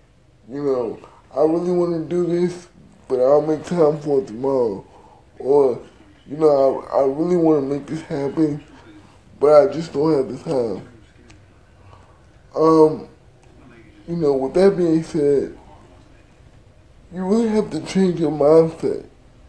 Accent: American